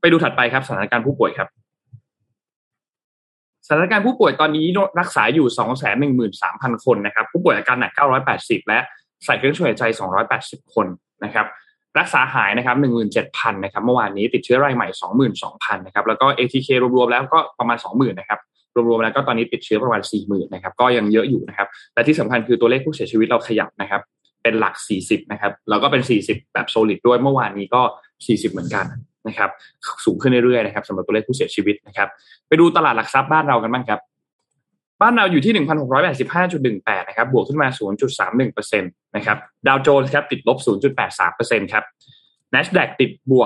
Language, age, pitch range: Thai, 20-39, 110-140 Hz